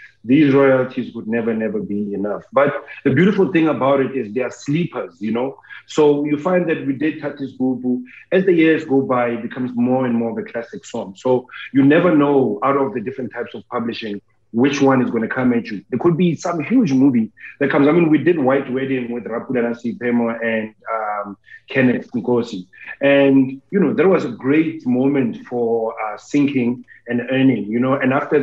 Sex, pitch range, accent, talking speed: male, 115-135 Hz, South African, 205 wpm